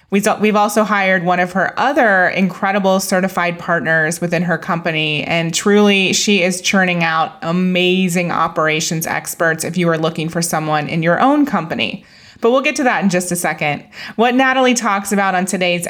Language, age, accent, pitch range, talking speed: English, 20-39, American, 170-200 Hz, 175 wpm